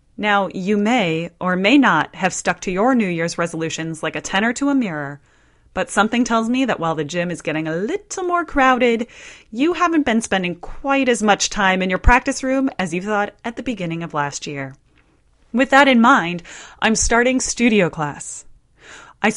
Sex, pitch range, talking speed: female, 175-250 Hz, 195 wpm